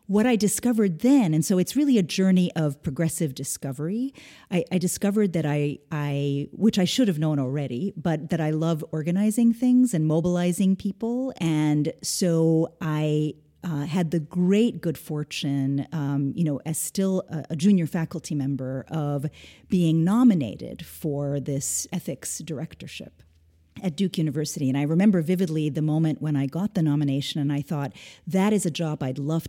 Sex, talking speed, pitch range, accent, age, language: female, 170 wpm, 150-190 Hz, American, 40-59, English